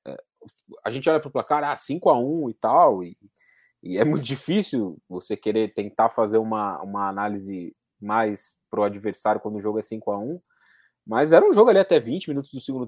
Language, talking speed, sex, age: Portuguese, 180 wpm, male, 20-39